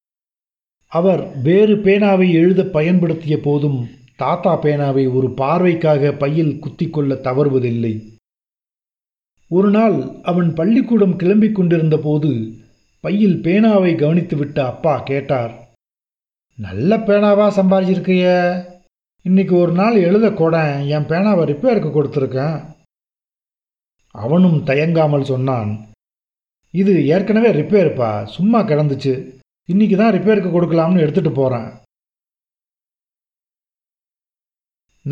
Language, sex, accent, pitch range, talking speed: Tamil, male, native, 140-195 Hz, 85 wpm